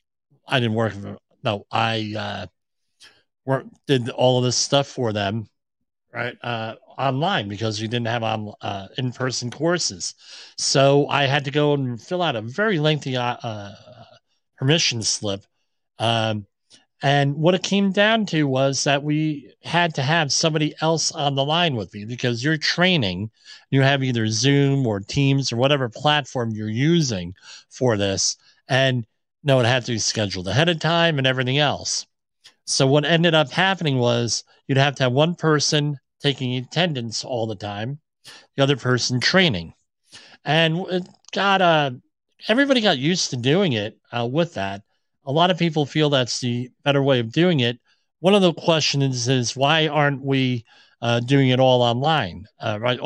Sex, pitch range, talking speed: male, 115-155 Hz, 170 wpm